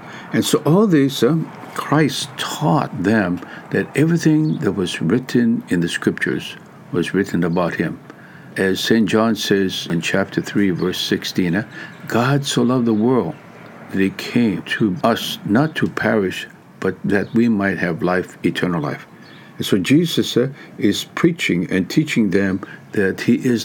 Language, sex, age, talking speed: English, male, 60-79, 160 wpm